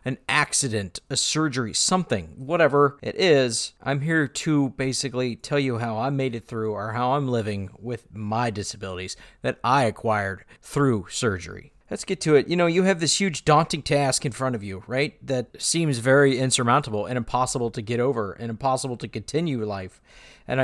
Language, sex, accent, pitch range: English, male, American, 115-150 Hz